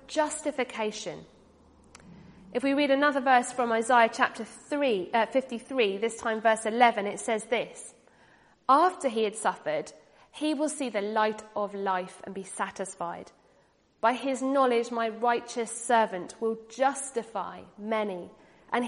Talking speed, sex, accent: 135 wpm, female, British